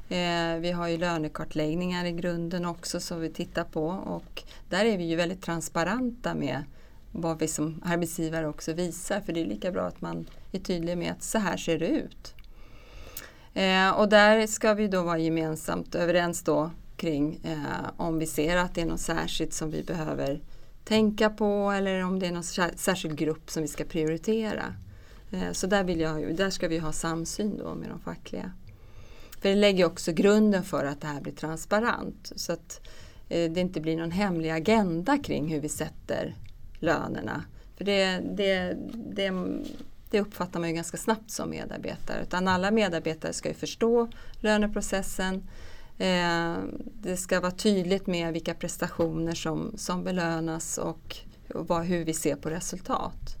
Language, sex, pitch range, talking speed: Swedish, female, 160-195 Hz, 165 wpm